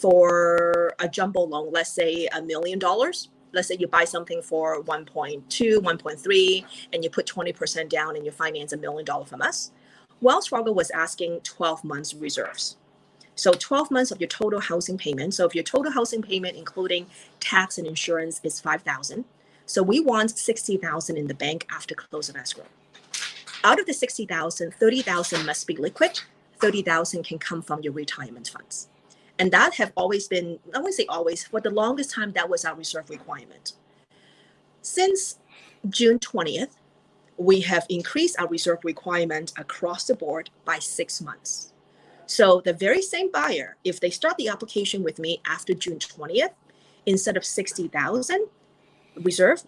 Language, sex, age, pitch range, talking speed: English, female, 30-49, 165-225 Hz, 160 wpm